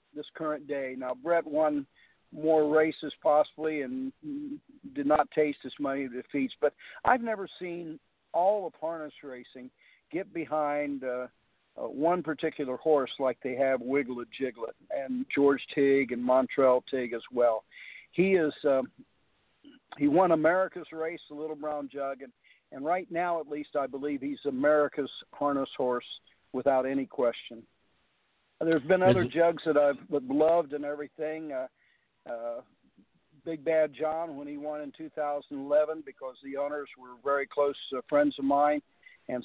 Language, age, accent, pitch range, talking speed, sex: English, 50-69, American, 135-160 Hz, 155 wpm, male